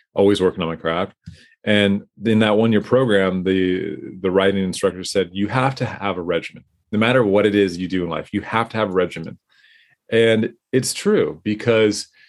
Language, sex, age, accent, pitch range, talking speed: English, male, 30-49, American, 95-120 Hz, 195 wpm